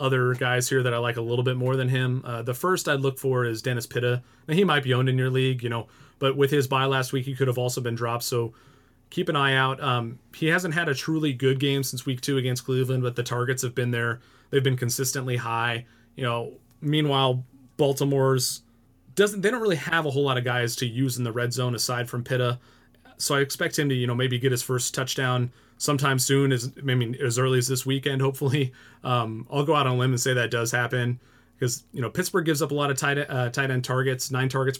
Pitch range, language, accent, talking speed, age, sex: 120-135 Hz, English, American, 245 wpm, 30-49, male